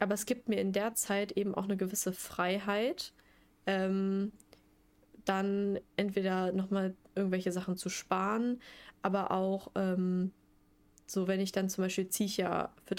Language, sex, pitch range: German, female, 180-210 Hz